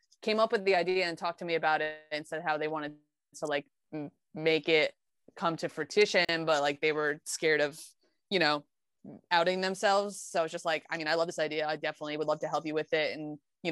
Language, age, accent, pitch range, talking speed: English, 20-39, American, 155-175 Hz, 235 wpm